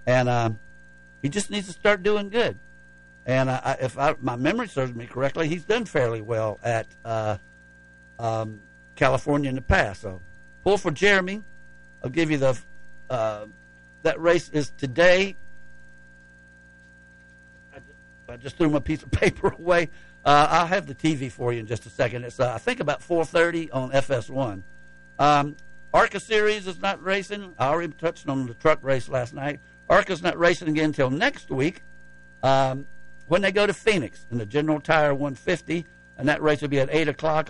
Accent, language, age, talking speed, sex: American, English, 60-79, 175 wpm, male